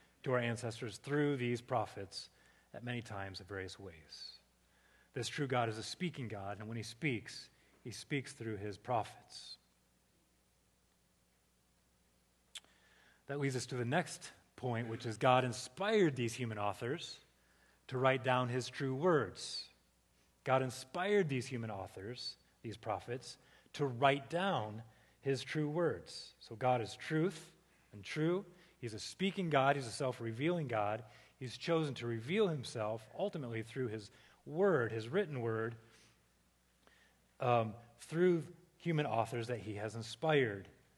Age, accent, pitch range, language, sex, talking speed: 30-49, American, 100-135 Hz, English, male, 140 wpm